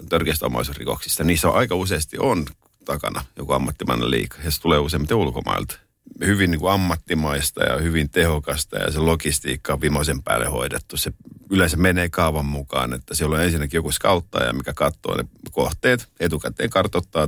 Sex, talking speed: male, 155 wpm